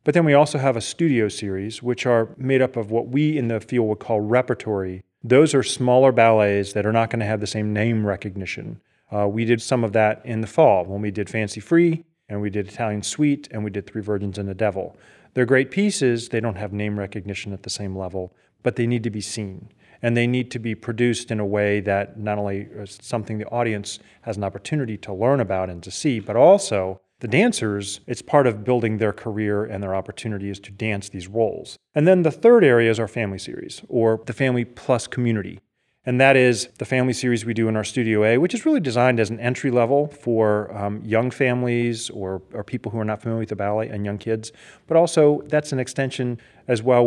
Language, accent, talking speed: English, American, 230 wpm